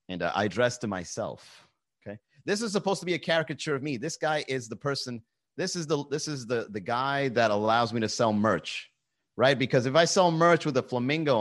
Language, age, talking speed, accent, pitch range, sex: English, 30-49, 220 wpm, American, 110-135 Hz, male